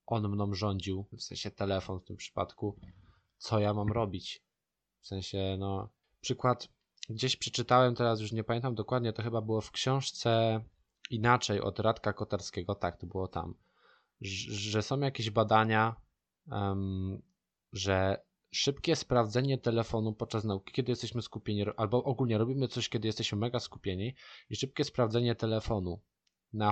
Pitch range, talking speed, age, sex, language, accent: 100-120 Hz, 140 wpm, 20-39, male, Polish, native